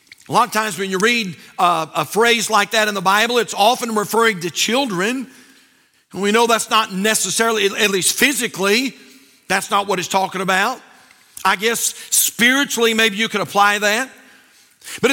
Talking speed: 175 wpm